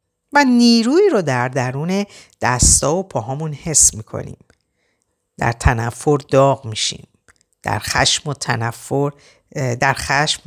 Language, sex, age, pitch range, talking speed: Persian, female, 50-69, 120-195 Hz, 115 wpm